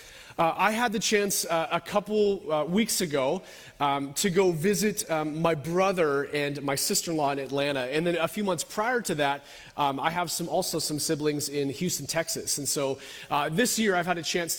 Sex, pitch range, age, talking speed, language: male, 155-200 Hz, 30-49, 205 wpm, English